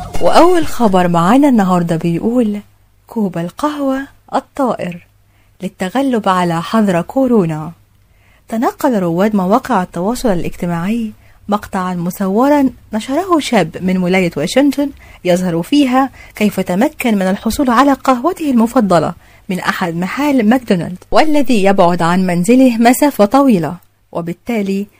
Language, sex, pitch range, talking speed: Arabic, female, 180-245 Hz, 105 wpm